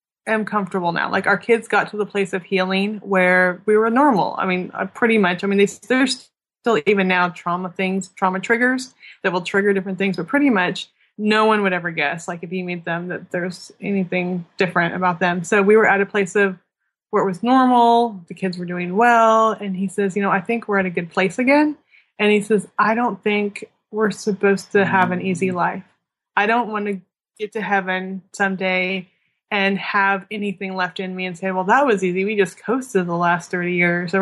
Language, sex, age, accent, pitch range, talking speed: English, female, 20-39, American, 180-210 Hz, 215 wpm